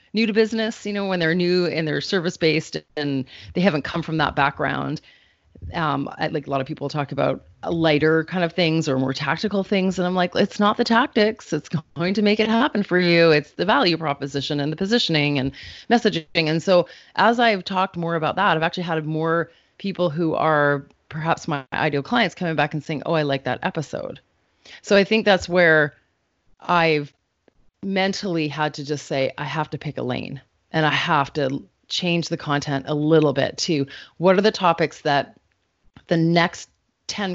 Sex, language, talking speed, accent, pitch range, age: female, English, 200 wpm, American, 140-180 Hz, 30-49